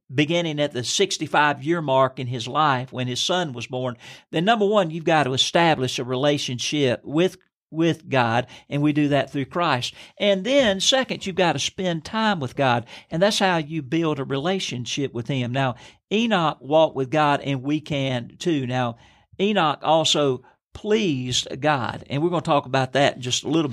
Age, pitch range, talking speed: 50-69, 130-165 Hz, 190 wpm